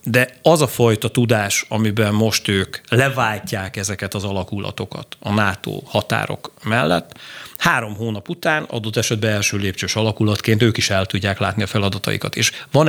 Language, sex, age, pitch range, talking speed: Hungarian, male, 40-59, 100-130 Hz, 155 wpm